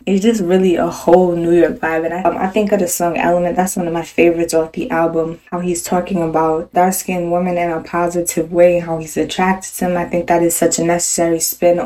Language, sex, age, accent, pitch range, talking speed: English, female, 10-29, American, 170-185 Hz, 245 wpm